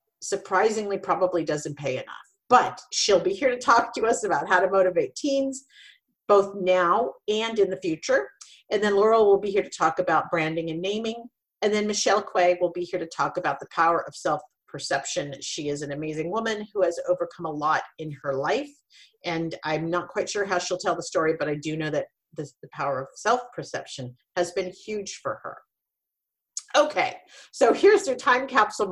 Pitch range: 165-260 Hz